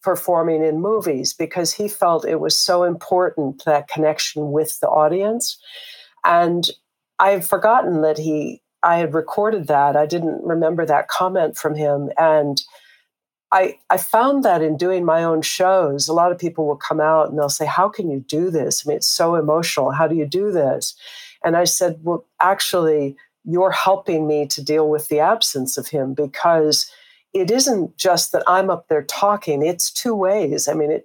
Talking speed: 185 wpm